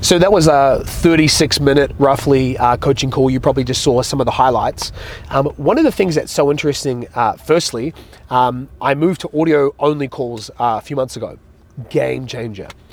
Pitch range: 120-150 Hz